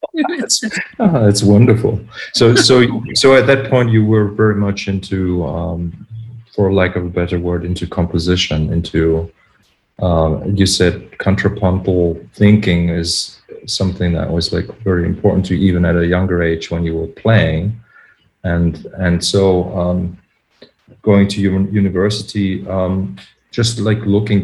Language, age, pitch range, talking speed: English, 40-59, 85-105 Hz, 145 wpm